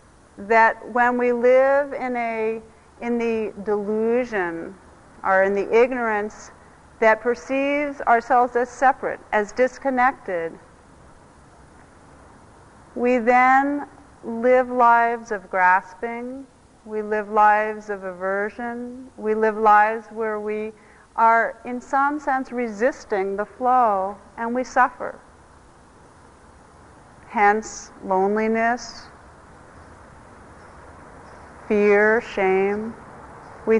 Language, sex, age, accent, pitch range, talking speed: English, female, 40-59, American, 195-255 Hz, 90 wpm